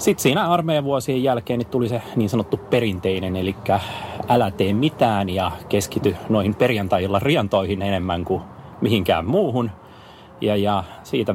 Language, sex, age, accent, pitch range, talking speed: Finnish, male, 30-49, native, 95-115 Hz, 135 wpm